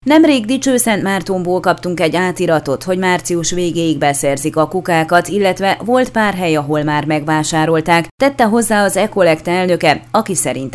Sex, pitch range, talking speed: female, 160-200 Hz, 145 wpm